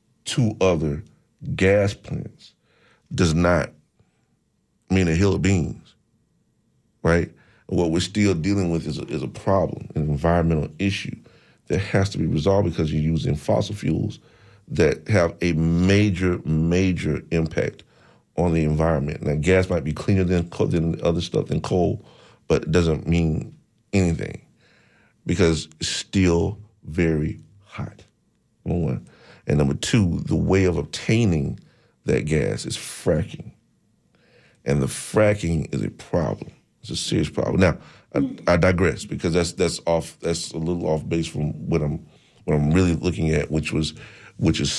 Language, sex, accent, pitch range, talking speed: English, male, American, 80-95 Hz, 155 wpm